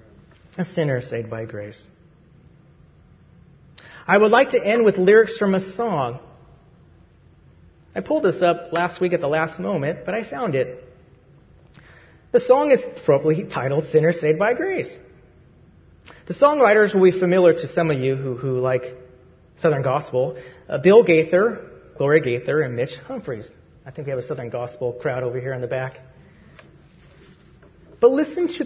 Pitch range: 140-210 Hz